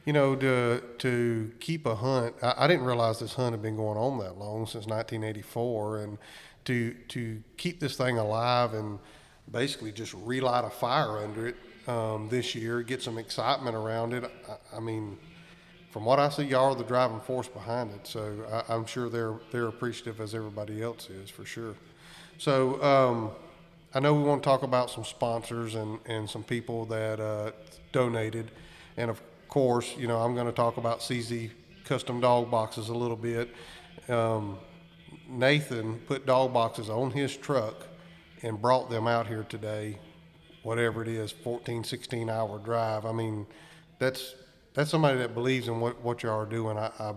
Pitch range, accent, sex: 110-130 Hz, American, male